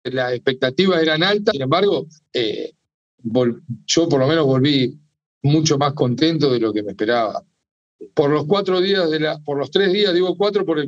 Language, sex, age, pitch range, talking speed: Spanish, male, 40-59, 120-160 Hz, 195 wpm